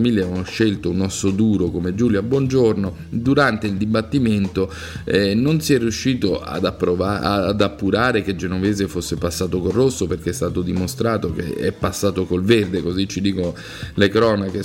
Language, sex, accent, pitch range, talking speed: Italian, male, native, 90-110 Hz, 160 wpm